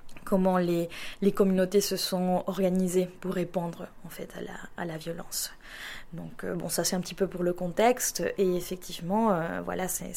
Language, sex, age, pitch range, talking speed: French, female, 20-39, 180-200 Hz, 185 wpm